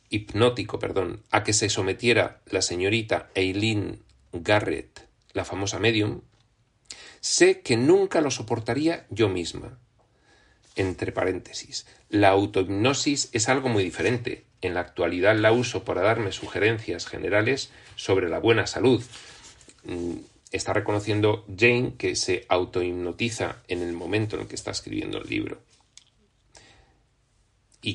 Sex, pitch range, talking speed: male, 105-130 Hz, 120 wpm